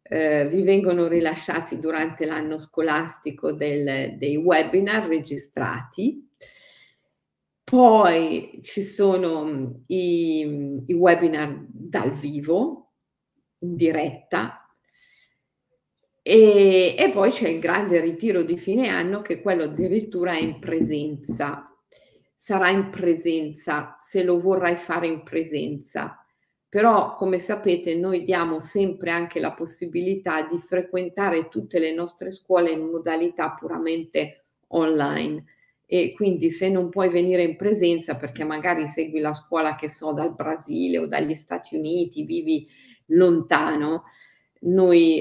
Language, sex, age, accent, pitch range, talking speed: Italian, female, 40-59, native, 155-185 Hz, 120 wpm